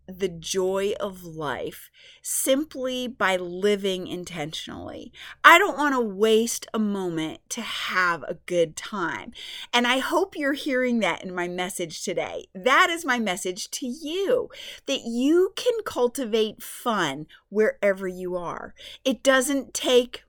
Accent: American